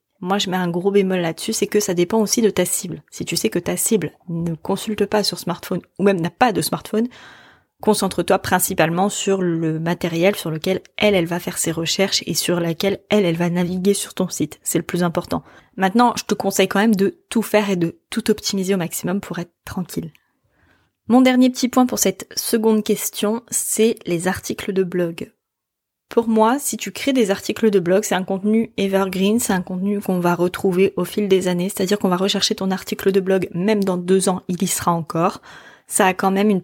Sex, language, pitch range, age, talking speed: female, French, 180-215 Hz, 20-39, 220 wpm